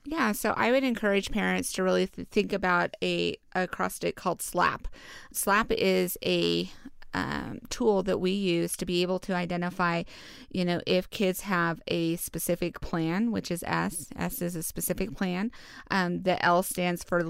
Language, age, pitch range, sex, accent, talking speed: English, 30-49, 170-185 Hz, female, American, 170 wpm